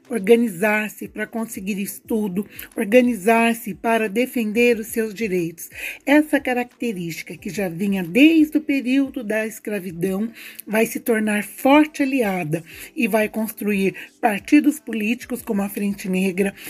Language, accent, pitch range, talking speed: Portuguese, Brazilian, 215-265 Hz, 120 wpm